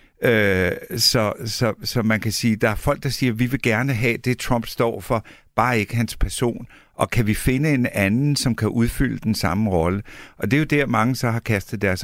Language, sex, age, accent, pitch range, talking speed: Danish, male, 60-79, native, 105-130 Hz, 220 wpm